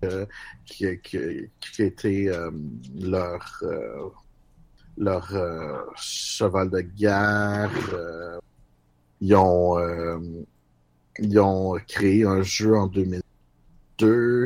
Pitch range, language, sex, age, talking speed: 95-110 Hz, French, male, 50-69, 85 wpm